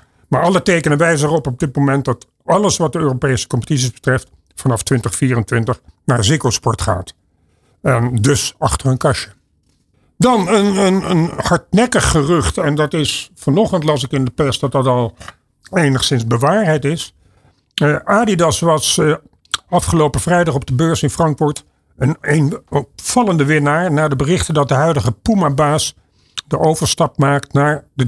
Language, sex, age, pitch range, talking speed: Dutch, male, 50-69, 130-165 Hz, 155 wpm